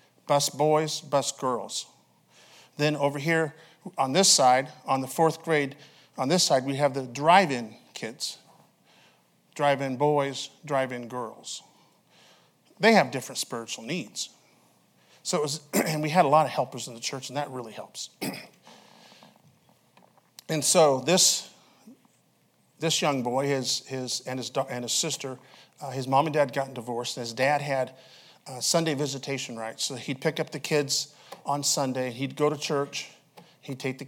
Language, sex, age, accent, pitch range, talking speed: English, male, 50-69, American, 125-150 Hz, 160 wpm